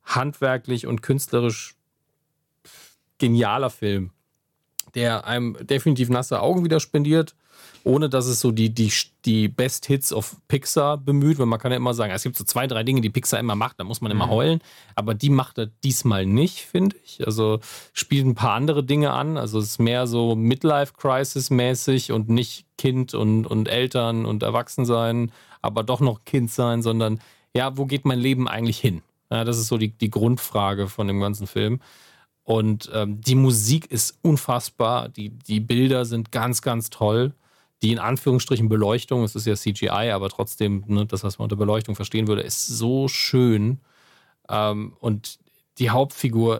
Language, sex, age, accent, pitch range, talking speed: German, male, 40-59, German, 110-135 Hz, 175 wpm